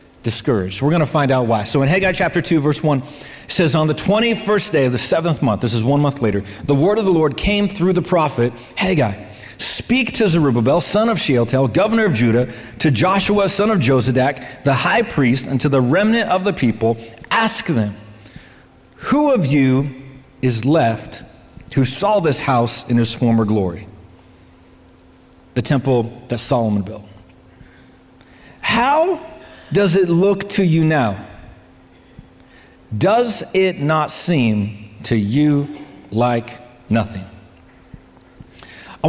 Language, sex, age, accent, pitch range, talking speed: English, male, 40-59, American, 120-160 Hz, 150 wpm